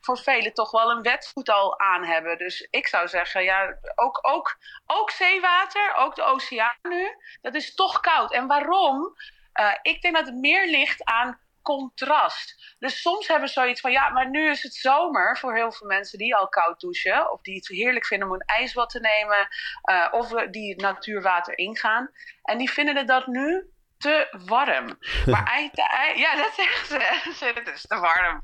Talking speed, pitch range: 190 wpm, 220-325 Hz